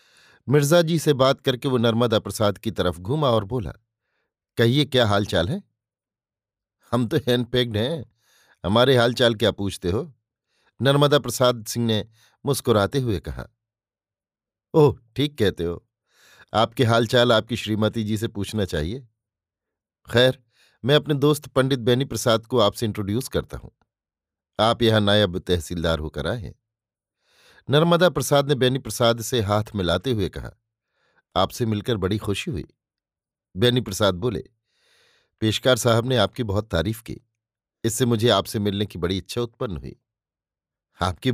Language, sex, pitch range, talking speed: Hindi, male, 100-125 Hz, 150 wpm